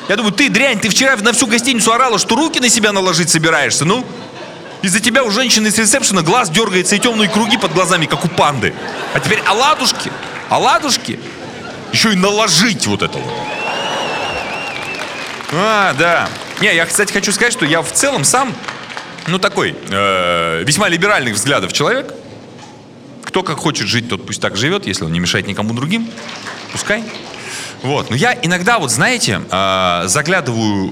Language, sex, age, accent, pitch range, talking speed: Russian, male, 30-49, native, 160-260 Hz, 165 wpm